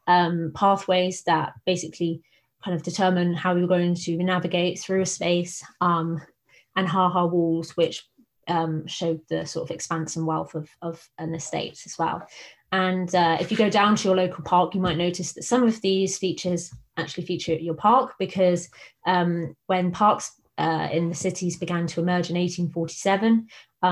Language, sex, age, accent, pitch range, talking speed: English, female, 20-39, British, 170-190 Hz, 180 wpm